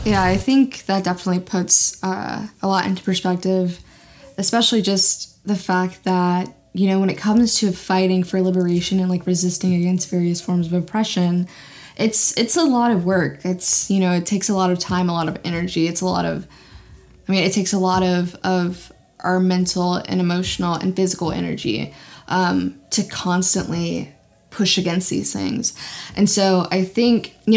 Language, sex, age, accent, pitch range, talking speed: English, female, 10-29, American, 180-195 Hz, 180 wpm